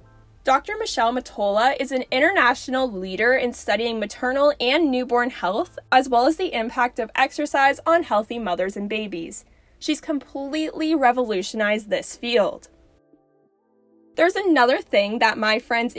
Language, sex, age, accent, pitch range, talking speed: English, female, 10-29, American, 220-295 Hz, 135 wpm